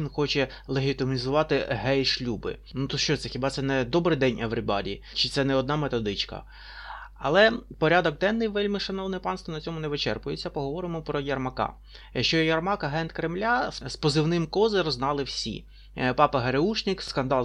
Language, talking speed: Russian, 150 wpm